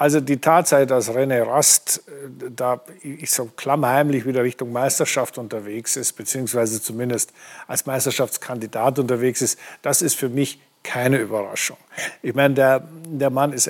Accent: German